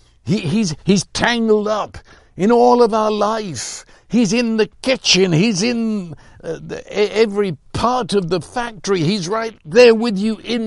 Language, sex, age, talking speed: English, male, 60-79, 165 wpm